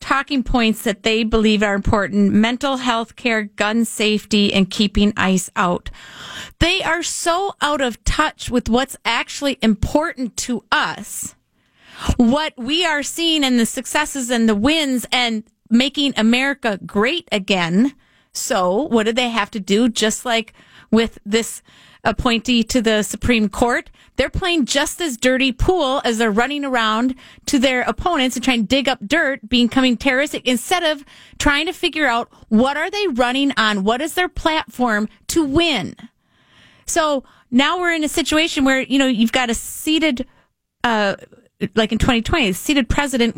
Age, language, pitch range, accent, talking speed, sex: 30-49, English, 225-280 Hz, American, 165 wpm, female